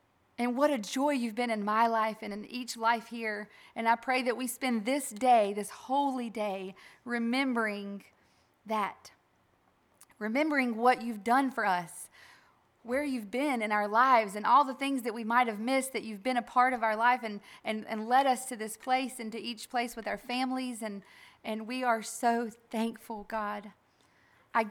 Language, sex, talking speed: English, female, 190 wpm